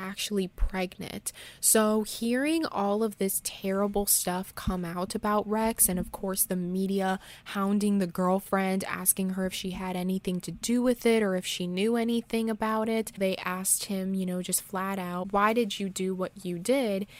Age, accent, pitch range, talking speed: 20-39, American, 185-220 Hz, 185 wpm